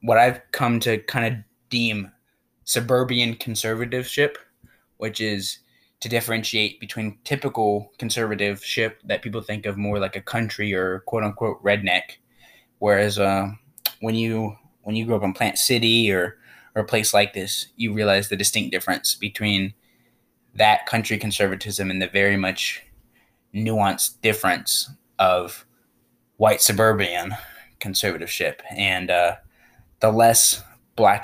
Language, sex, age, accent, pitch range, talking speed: English, male, 10-29, American, 100-115 Hz, 135 wpm